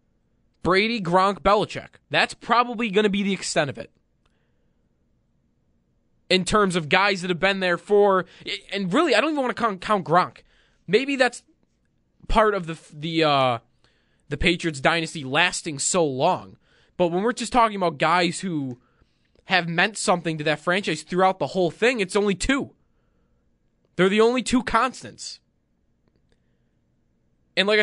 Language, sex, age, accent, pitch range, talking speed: English, male, 20-39, American, 140-200 Hz, 155 wpm